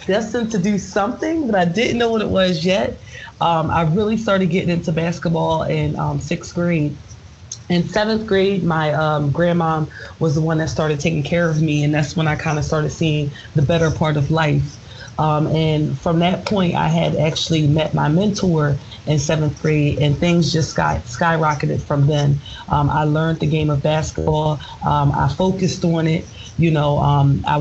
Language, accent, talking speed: English, American, 190 wpm